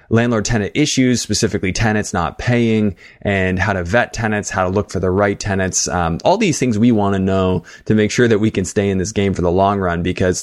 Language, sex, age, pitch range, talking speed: English, male, 20-39, 90-105 Hz, 235 wpm